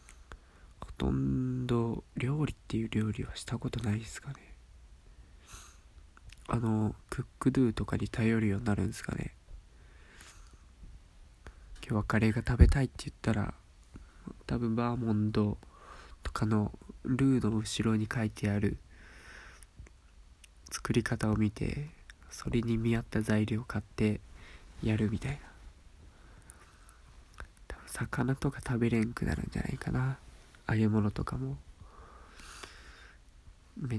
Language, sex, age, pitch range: Japanese, male, 20-39, 80-115 Hz